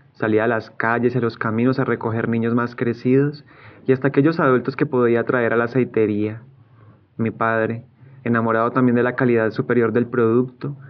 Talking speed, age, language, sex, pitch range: 175 wpm, 30-49, Spanish, male, 115-135 Hz